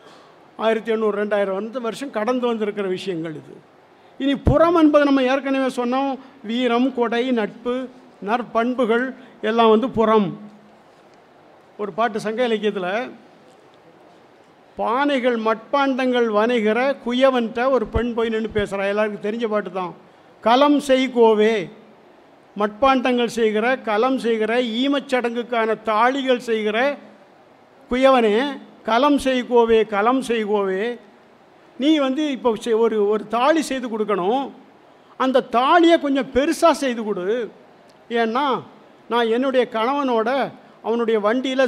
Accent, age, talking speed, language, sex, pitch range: native, 50-69, 100 wpm, Tamil, male, 220-265 Hz